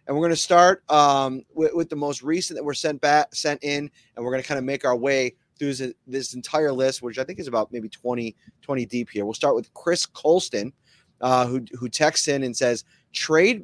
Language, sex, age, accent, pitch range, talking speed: English, male, 30-49, American, 125-155 Hz, 240 wpm